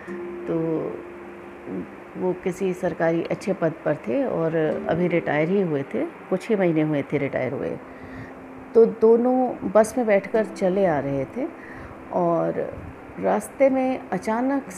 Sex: female